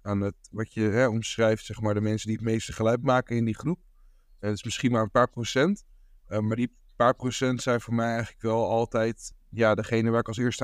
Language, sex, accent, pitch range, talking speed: Dutch, male, Dutch, 110-125 Hz, 245 wpm